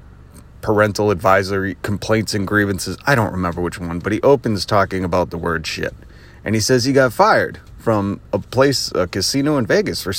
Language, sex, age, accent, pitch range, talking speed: English, male, 30-49, American, 90-120 Hz, 190 wpm